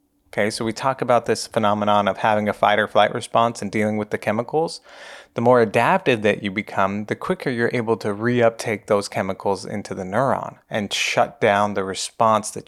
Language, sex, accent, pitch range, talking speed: English, male, American, 100-125 Hz, 200 wpm